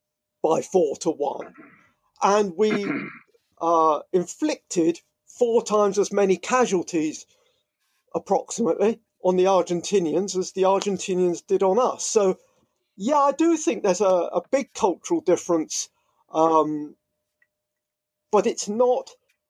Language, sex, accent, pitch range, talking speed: English, male, British, 180-240 Hz, 120 wpm